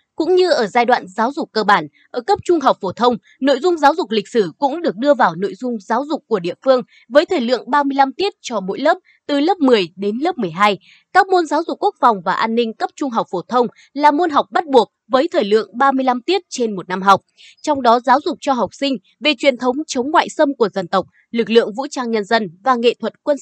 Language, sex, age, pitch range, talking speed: Vietnamese, female, 20-39, 210-295 Hz, 255 wpm